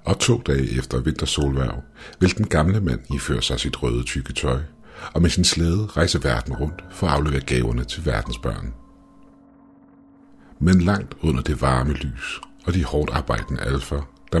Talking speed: 165 wpm